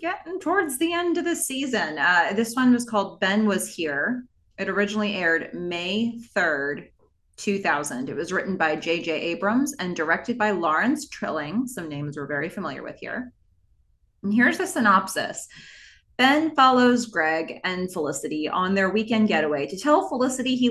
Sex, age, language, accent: female, 30-49, English, American